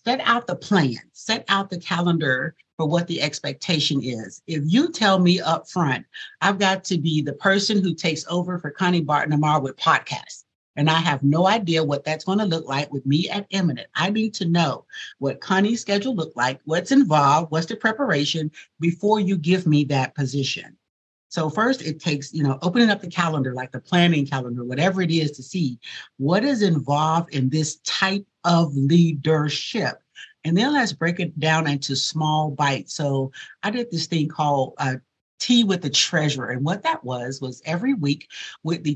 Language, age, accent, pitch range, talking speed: English, 50-69, American, 140-180 Hz, 190 wpm